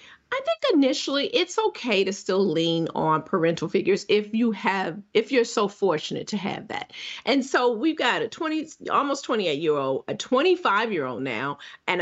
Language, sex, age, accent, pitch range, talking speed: English, female, 40-59, American, 210-310 Hz, 185 wpm